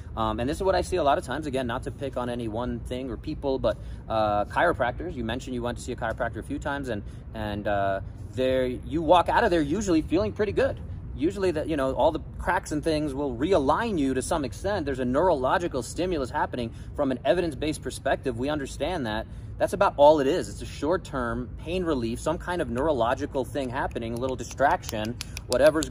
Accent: American